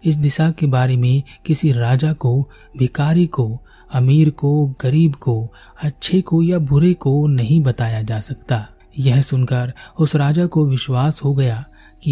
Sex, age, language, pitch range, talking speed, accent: male, 30-49, Hindi, 120-150 Hz, 160 wpm, native